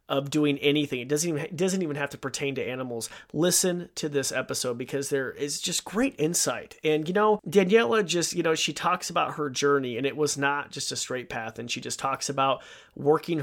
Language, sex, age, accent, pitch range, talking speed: English, male, 30-49, American, 140-160 Hz, 220 wpm